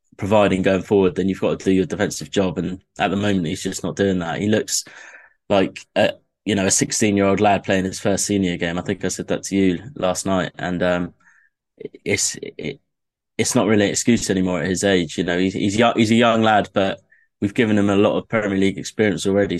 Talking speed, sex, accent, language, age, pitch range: 240 wpm, male, British, English, 20-39, 95-105 Hz